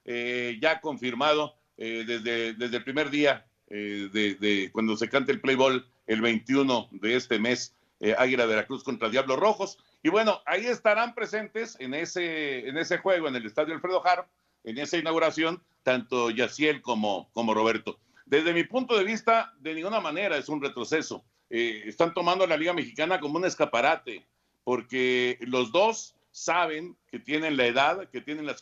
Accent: Mexican